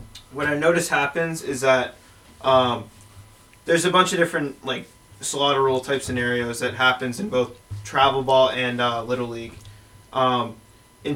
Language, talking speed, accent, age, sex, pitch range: English, 155 wpm, American, 20-39, male, 120-140 Hz